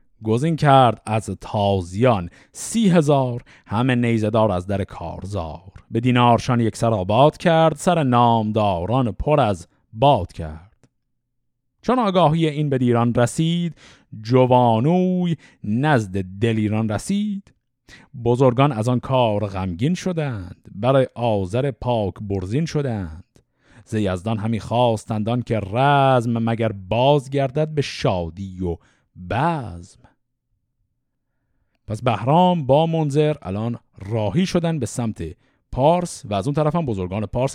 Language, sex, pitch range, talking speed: Persian, male, 105-145 Hz, 115 wpm